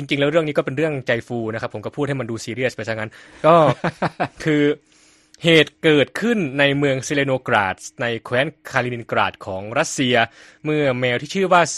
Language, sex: Thai, male